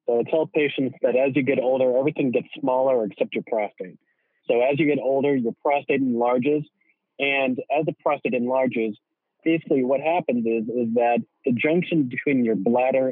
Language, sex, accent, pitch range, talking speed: English, male, American, 120-140 Hz, 180 wpm